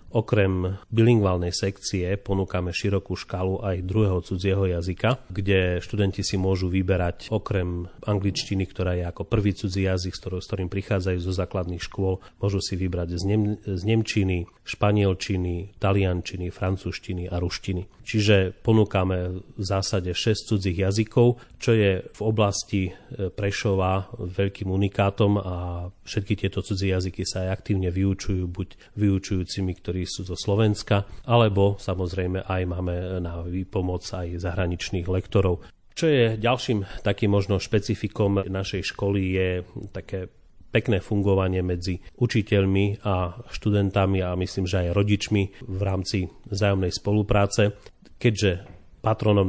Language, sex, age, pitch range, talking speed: Slovak, male, 30-49, 90-105 Hz, 125 wpm